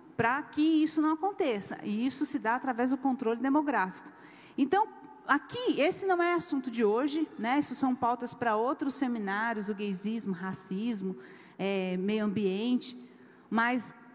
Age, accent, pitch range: 40-59, Brazilian, 220-280 Hz